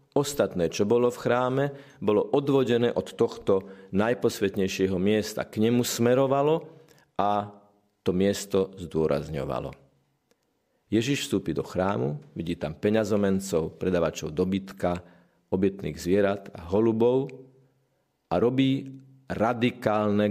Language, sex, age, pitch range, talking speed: Slovak, male, 40-59, 95-135 Hz, 100 wpm